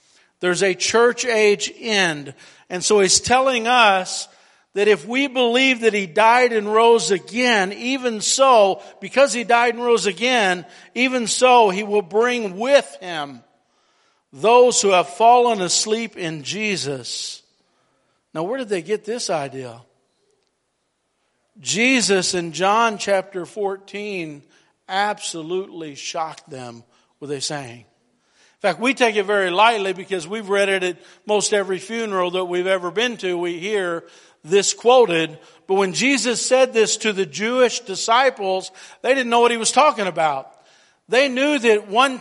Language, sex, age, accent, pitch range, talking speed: English, male, 60-79, American, 190-240 Hz, 150 wpm